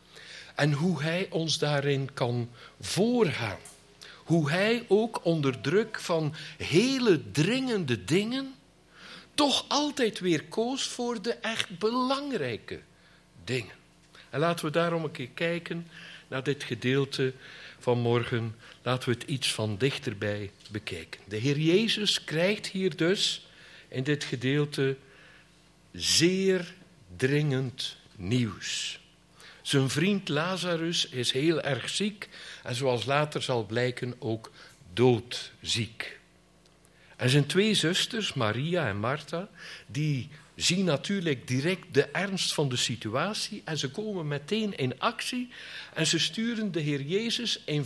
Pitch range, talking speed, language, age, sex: 130-195 Hz, 125 wpm, Dutch, 60-79, male